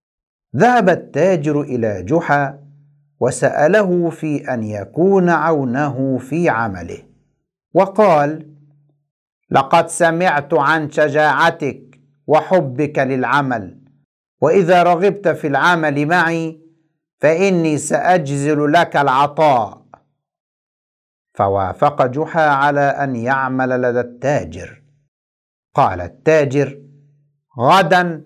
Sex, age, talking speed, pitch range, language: male, 60-79, 80 wpm, 135-160 Hz, Arabic